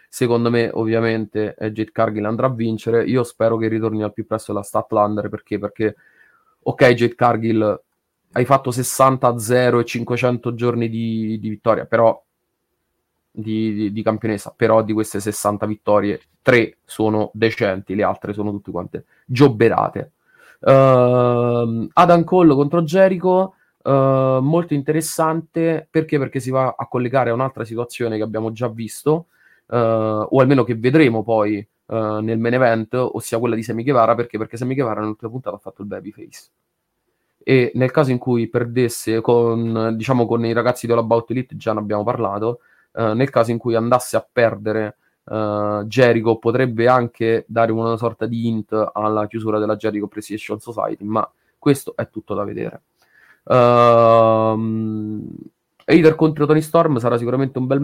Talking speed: 160 wpm